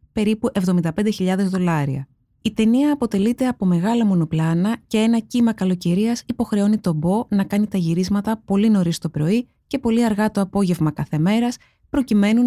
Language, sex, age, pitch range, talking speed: Greek, female, 20-39, 170-230 Hz, 155 wpm